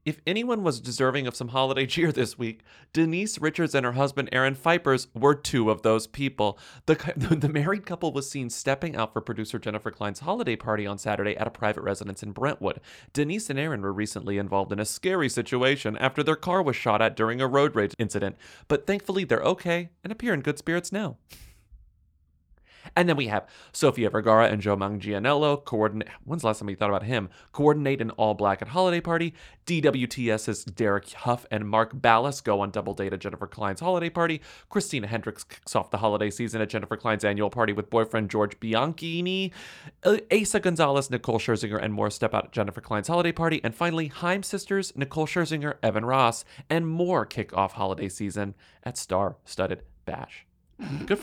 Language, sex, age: English, male, 30-49